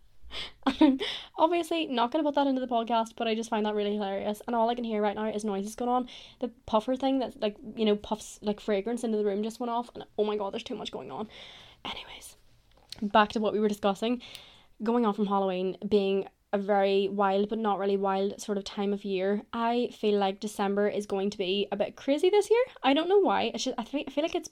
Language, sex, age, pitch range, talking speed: English, female, 20-39, 205-245 Hz, 250 wpm